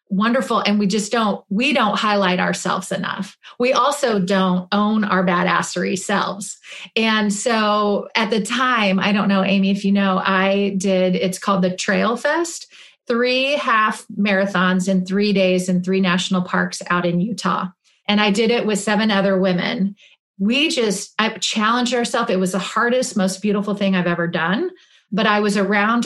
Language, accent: English, American